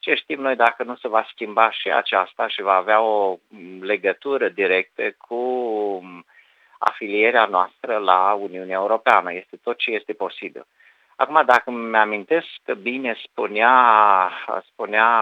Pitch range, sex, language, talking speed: 95-125 Hz, male, Romanian, 140 wpm